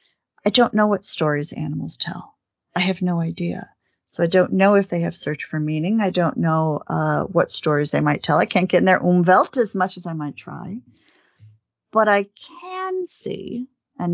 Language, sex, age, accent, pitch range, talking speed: English, female, 40-59, American, 160-210 Hz, 200 wpm